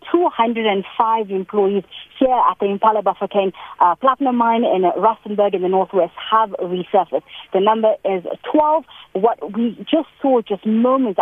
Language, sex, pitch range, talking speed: English, female, 195-235 Hz, 145 wpm